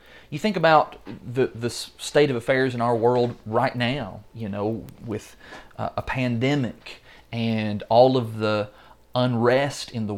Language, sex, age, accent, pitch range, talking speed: English, male, 30-49, American, 110-160 Hz, 155 wpm